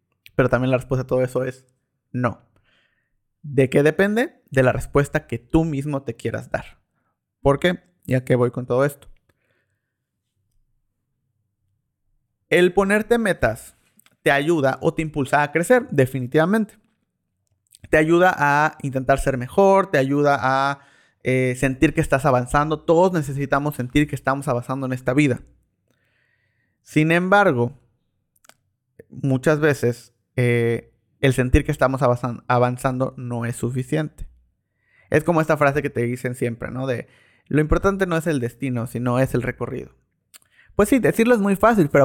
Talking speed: 145 wpm